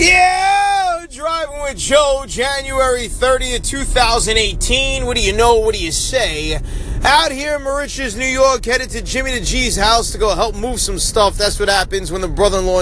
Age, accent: 20-39, American